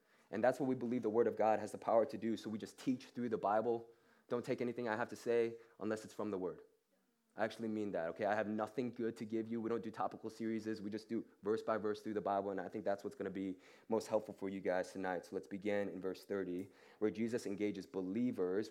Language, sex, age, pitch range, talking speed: English, male, 20-39, 100-120 Hz, 265 wpm